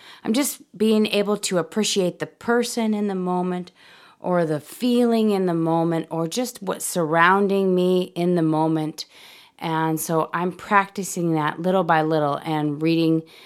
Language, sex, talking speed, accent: English, female, 155 wpm, American